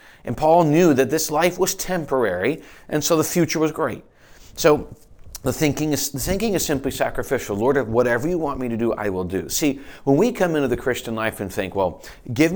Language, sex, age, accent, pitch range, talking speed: English, male, 40-59, American, 115-150 Hz, 205 wpm